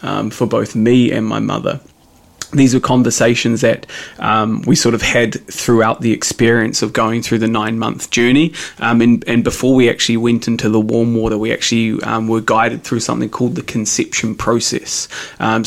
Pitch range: 110-125 Hz